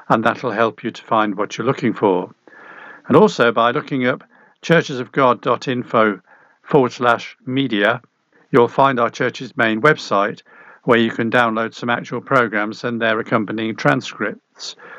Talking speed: 145 wpm